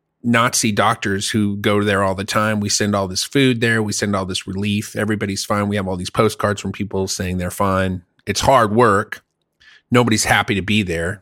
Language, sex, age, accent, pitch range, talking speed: English, male, 30-49, American, 95-120 Hz, 210 wpm